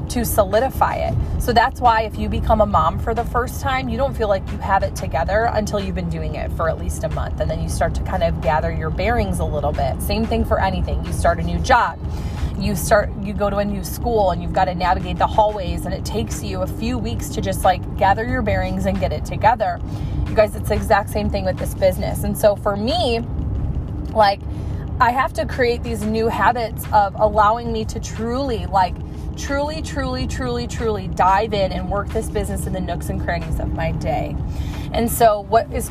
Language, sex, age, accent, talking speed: English, female, 20-39, American, 230 wpm